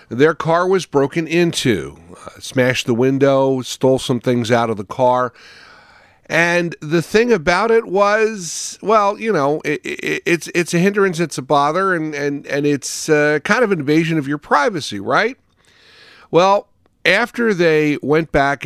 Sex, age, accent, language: male, 50-69, American, English